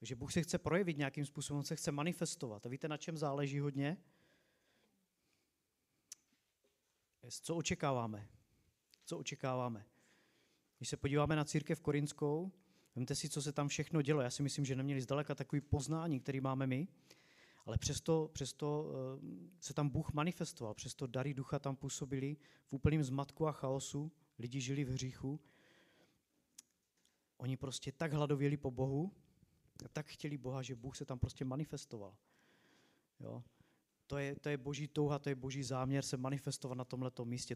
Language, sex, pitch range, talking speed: Czech, male, 130-150 Hz, 155 wpm